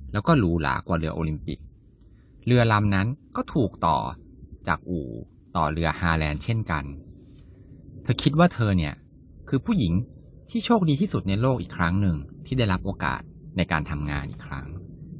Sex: male